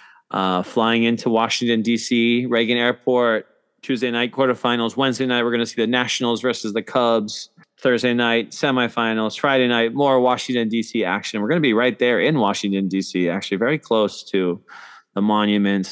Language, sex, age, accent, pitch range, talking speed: English, male, 20-39, American, 100-125 Hz, 170 wpm